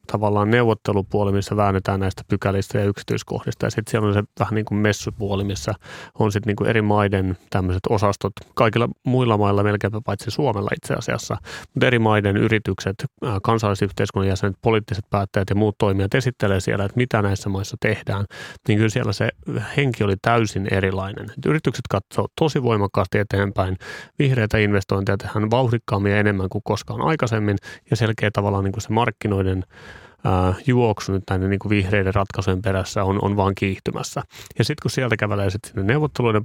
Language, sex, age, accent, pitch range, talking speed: Finnish, male, 30-49, native, 100-115 Hz, 160 wpm